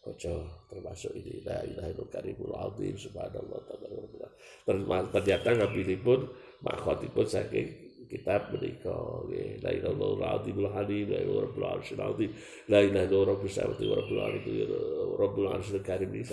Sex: male